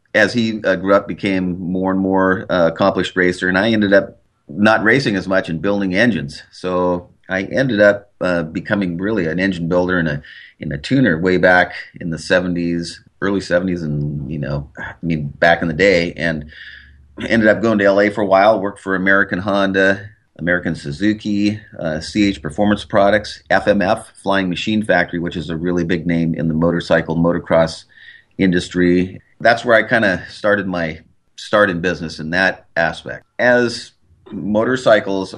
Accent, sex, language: American, male, English